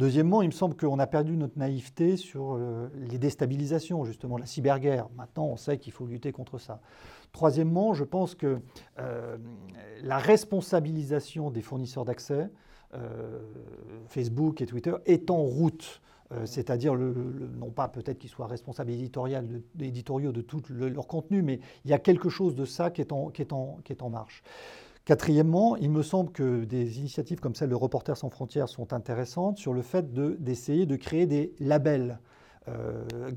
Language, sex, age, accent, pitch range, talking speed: French, male, 40-59, French, 125-165 Hz, 165 wpm